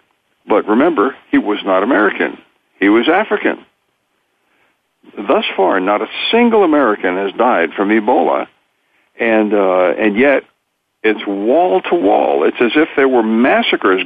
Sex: male